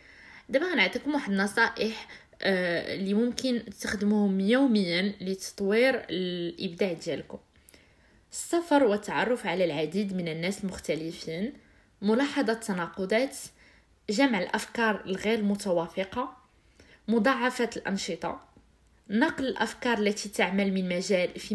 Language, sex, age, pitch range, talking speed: Arabic, female, 20-39, 190-235 Hz, 90 wpm